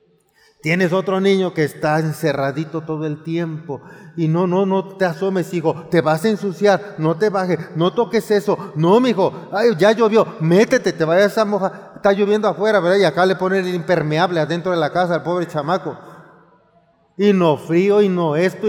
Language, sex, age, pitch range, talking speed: Spanish, male, 40-59, 155-190 Hz, 190 wpm